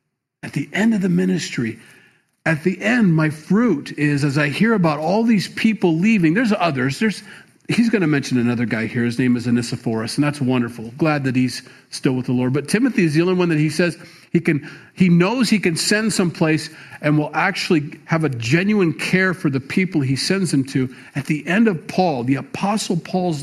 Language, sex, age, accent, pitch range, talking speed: English, male, 40-59, American, 140-185 Hz, 210 wpm